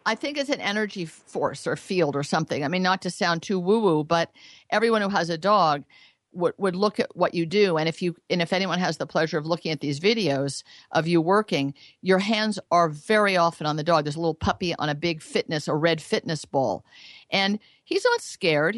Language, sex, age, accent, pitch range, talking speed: English, female, 50-69, American, 160-210 Hz, 225 wpm